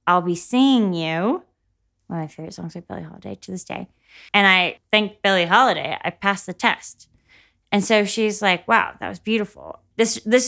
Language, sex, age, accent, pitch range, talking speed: English, female, 20-39, American, 175-225 Hz, 195 wpm